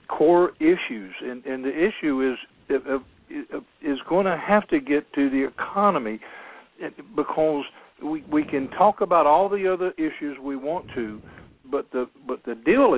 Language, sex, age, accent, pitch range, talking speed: English, male, 60-79, American, 110-145 Hz, 155 wpm